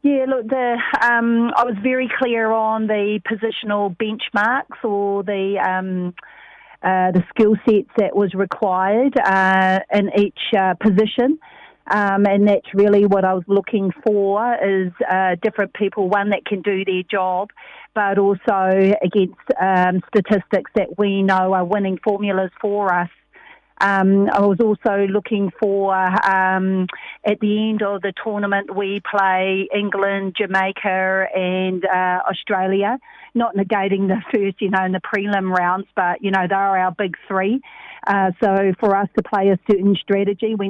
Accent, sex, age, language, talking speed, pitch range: Australian, female, 40-59, English, 160 wpm, 190-215 Hz